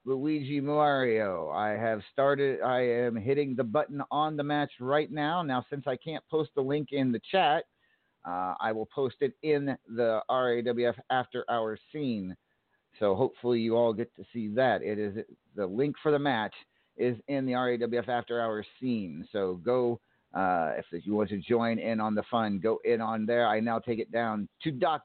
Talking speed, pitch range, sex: 195 wpm, 120-160 Hz, male